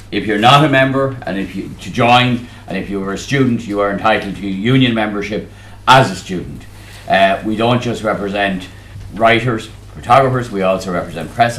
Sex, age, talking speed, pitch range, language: male, 60-79, 180 wpm, 95-110 Hz, English